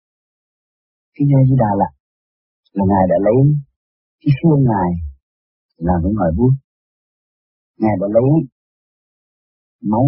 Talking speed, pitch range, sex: 105 wpm, 75-120 Hz, male